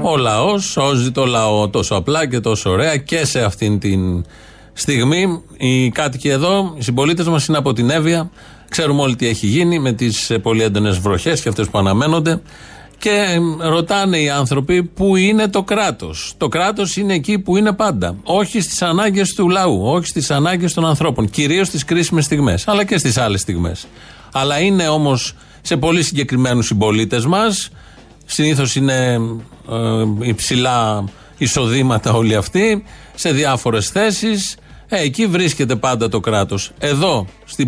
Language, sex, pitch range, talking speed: Greek, male, 115-170 Hz, 160 wpm